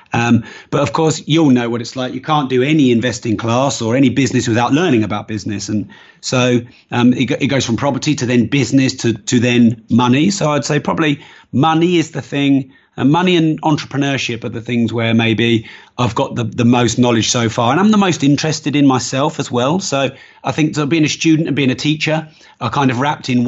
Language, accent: English, British